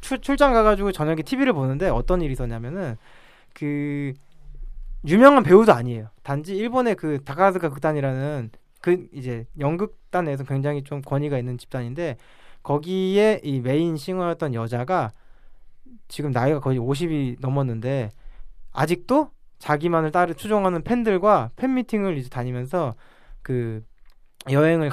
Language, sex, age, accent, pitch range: Korean, male, 20-39, native, 130-195 Hz